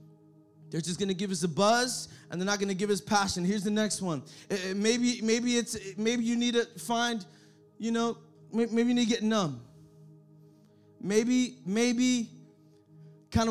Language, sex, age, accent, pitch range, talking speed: English, male, 20-39, American, 190-240 Hz, 175 wpm